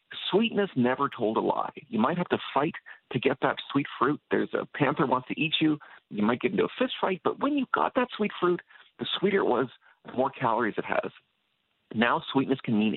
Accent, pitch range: American, 110-155 Hz